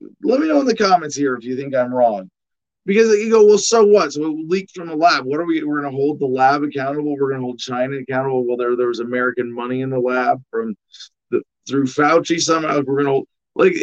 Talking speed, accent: 250 wpm, American